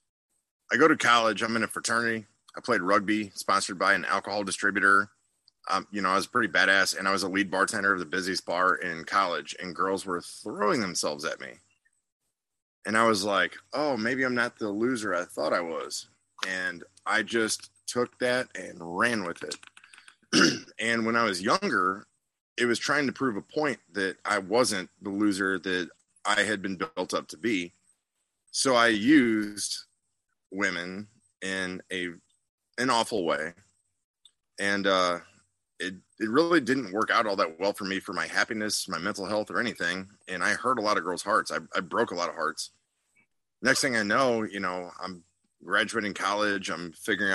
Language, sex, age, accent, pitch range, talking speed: English, male, 30-49, American, 95-110 Hz, 185 wpm